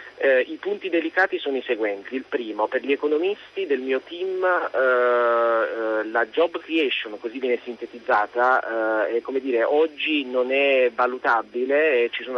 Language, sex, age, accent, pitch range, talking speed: Italian, male, 30-49, native, 120-150 Hz, 165 wpm